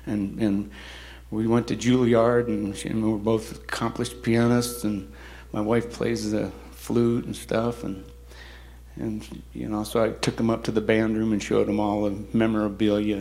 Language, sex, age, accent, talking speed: English, male, 60-79, American, 175 wpm